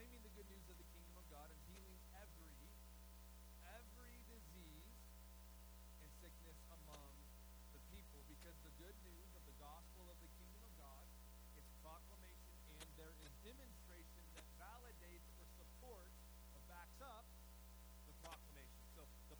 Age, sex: 40-59, male